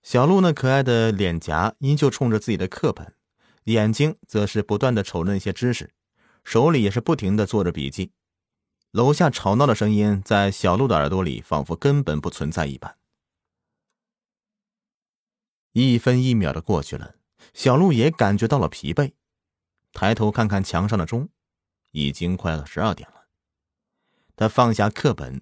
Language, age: Chinese, 30-49